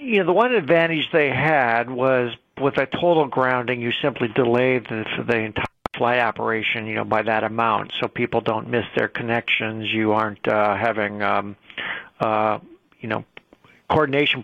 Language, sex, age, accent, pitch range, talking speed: English, male, 60-79, American, 115-135 Hz, 165 wpm